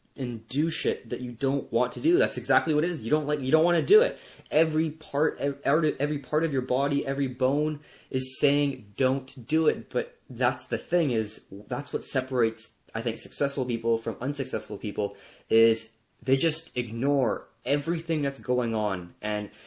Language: English